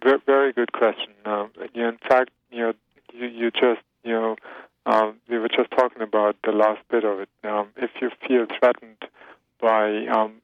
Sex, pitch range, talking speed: male, 110-125 Hz, 190 wpm